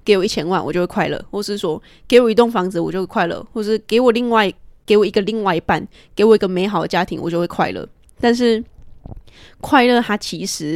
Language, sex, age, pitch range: Chinese, female, 20-39, 180-220 Hz